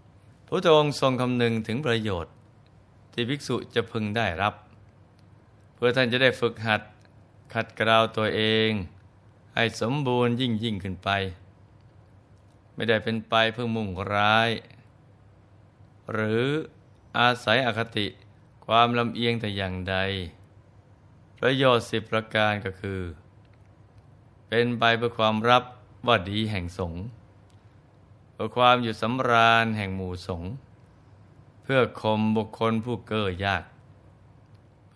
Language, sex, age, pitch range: Thai, male, 20-39, 100-120 Hz